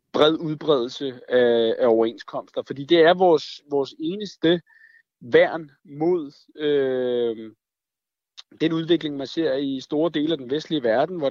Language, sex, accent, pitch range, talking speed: Danish, male, native, 125-165 Hz, 135 wpm